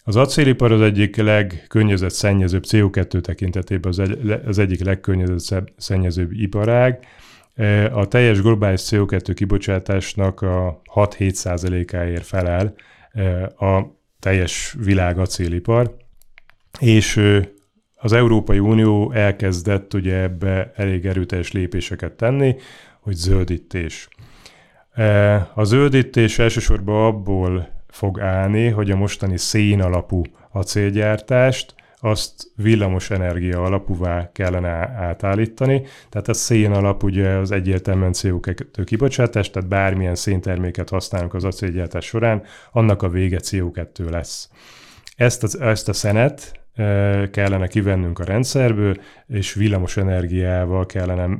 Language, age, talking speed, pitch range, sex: Hungarian, 30-49, 105 wpm, 95-110 Hz, male